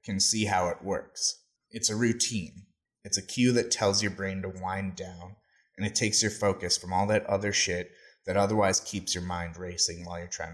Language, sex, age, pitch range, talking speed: English, male, 20-39, 95-110 Hz, 210 wpm